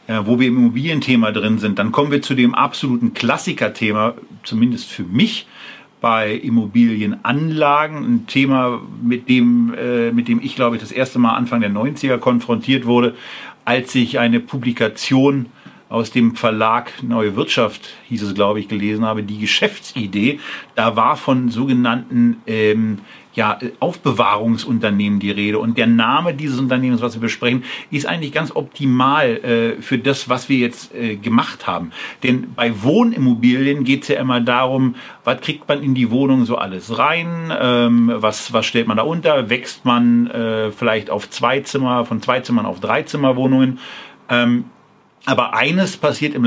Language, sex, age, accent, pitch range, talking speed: German, male, 50-69, German, 115-140 Hz, 165 wpm